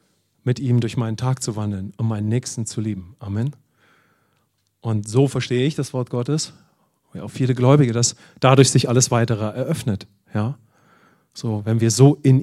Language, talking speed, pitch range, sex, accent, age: English, 175 wpm, 115-150 Hz, male, German, 40-59